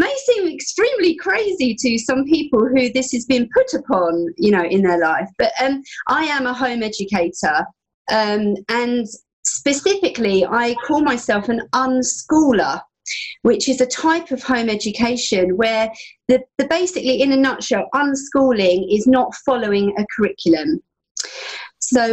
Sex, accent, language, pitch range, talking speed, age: female, British, English, 210-270 Hz, 145 wpm, 40-59